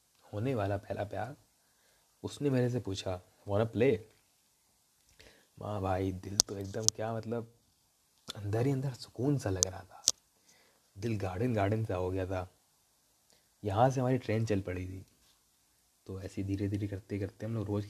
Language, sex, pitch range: Hindi, male, 95-115 Hz